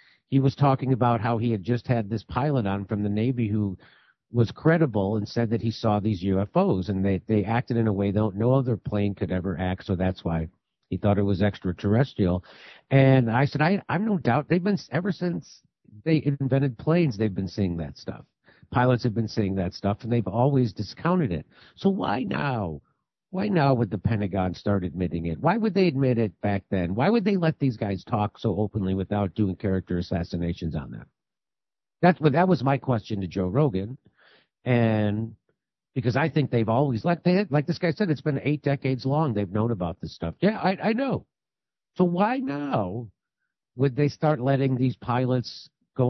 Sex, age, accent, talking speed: male, 50-69, American, 200 wpm